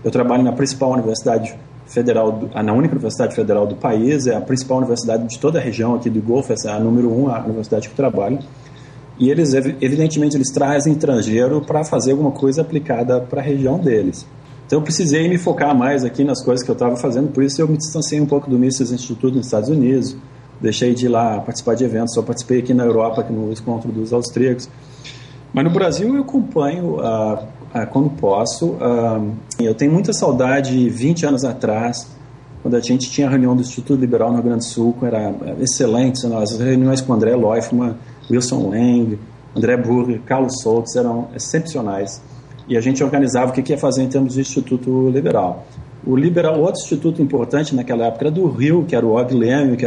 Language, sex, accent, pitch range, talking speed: Portuguese, male, Brazilian, 120-140 Hz, 200 wpm